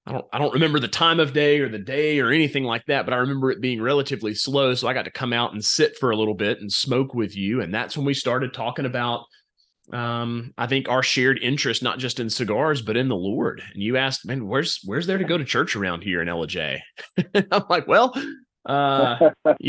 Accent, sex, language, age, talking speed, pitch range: American, male, English, 30-49, 240 wpm, 105-140 Hz